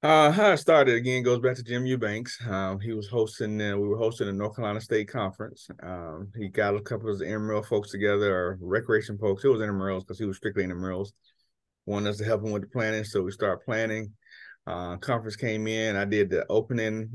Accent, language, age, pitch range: American, English, 30-49, 95-110 Hz